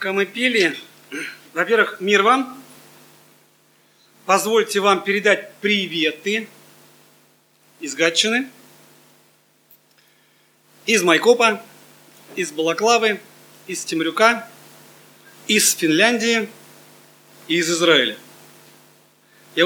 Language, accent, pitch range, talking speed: Russian, native, 165-225 Hz, 70 wpm